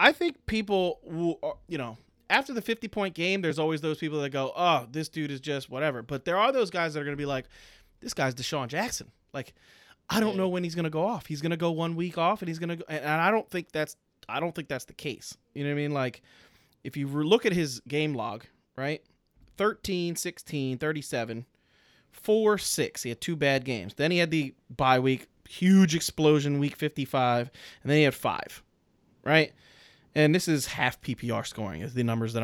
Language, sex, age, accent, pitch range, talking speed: English, male, 20-39, American, 125-165 Hz, 225 wpm